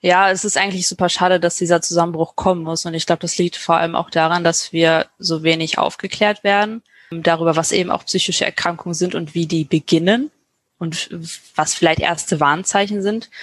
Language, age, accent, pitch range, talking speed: German, 20-39, German, 165-190 Hz, 190 wpm